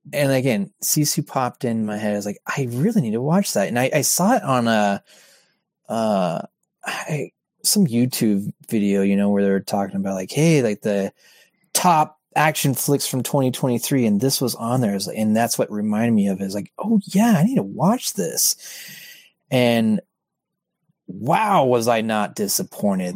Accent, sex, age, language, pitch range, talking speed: American, male, 30-49, English, 110-175 Hz, 185 wpm